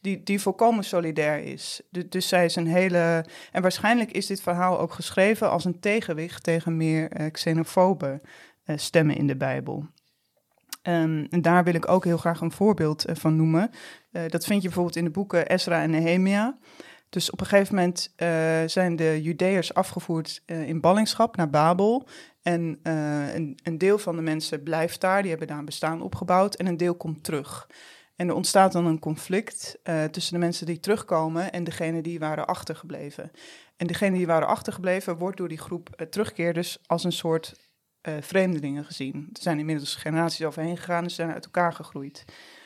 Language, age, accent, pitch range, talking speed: Dutch, 20-39, Dutch, 160-185 Hz, 190 wpm